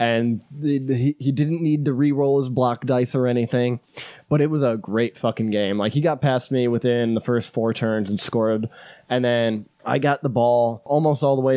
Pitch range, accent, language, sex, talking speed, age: 120-145 Hz, American, English, male, 205 wpm, 20-39